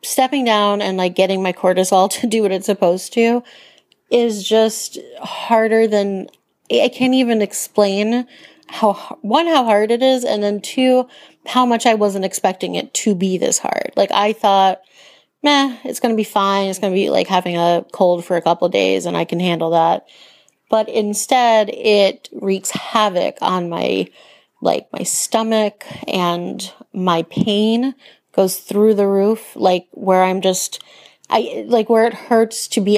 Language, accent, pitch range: English, American, 185-225 Hz